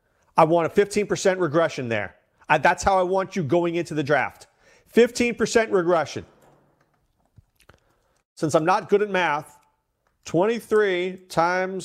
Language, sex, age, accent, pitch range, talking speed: English, male, 40-59, American, 155-190 Hz, 125 wpm